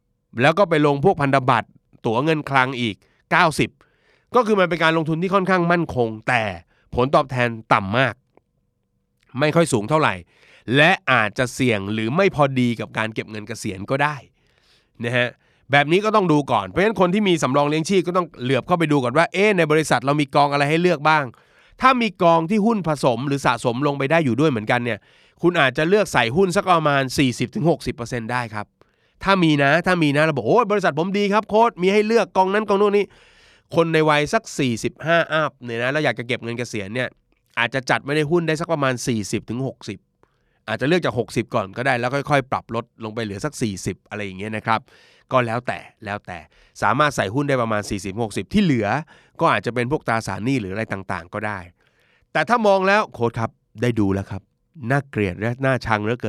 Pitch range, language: 115-165 Hz, Thai